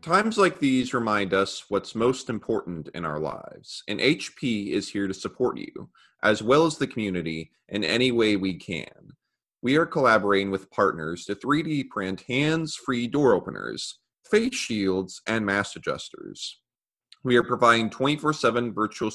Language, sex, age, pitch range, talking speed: English, male, 30-49, 95-135 Hz, 155 wpm